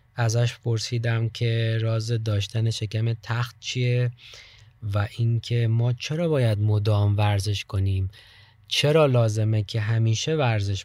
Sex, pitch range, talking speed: male, 110-130 Hz, 115 wpm